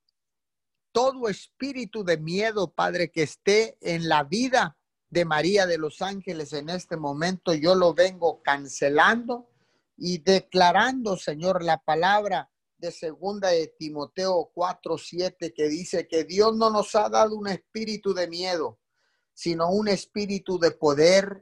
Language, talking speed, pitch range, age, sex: Spanish, 140 wpm, 150-195 Hz, 50-69, male